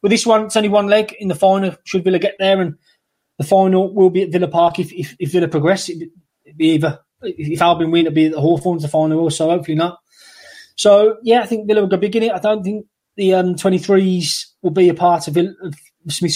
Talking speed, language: 255 wpm, English